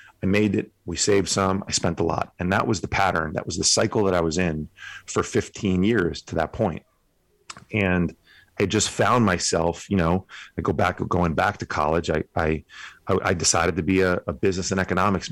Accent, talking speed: American, 210 wpm